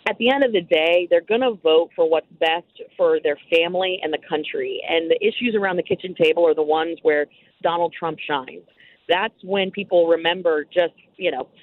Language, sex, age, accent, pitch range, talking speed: English, female, 30-49, American, 165-220 Hz, 205 wpm